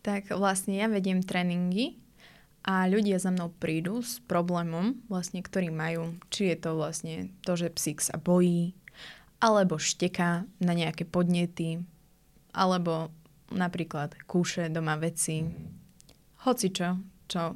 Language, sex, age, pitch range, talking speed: Slovak, female, 20-39, 170-195 Hz, 125 wpm